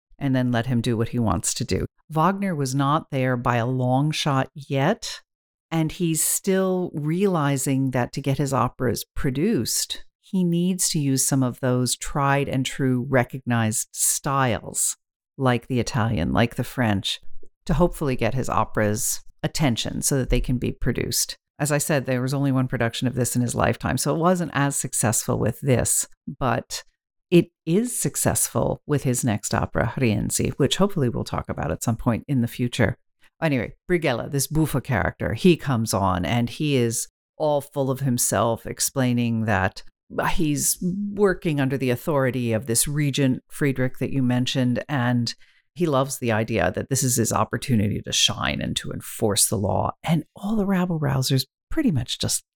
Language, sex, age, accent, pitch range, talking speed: English, female, 50-69, American, 120-150 Hz, 175 wpm